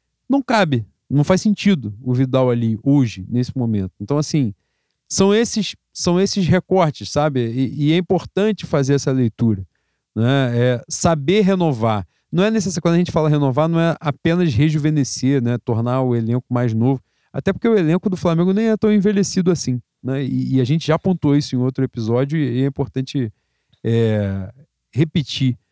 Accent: Brazilian